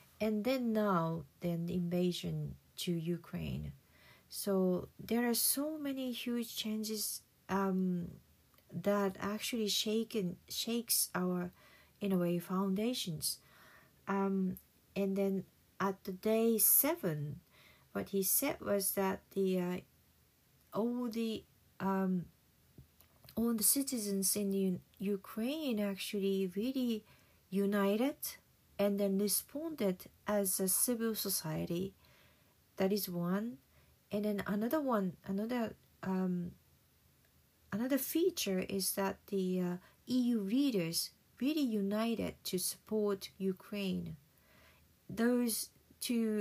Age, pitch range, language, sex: 40-59, 185-225 Hz, Japanese, female